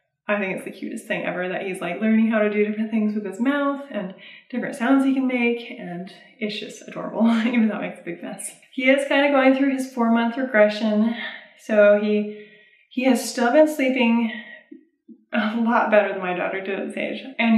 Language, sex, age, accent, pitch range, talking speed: English, female, 20-39, American, 200-235 Hz, 215 wpm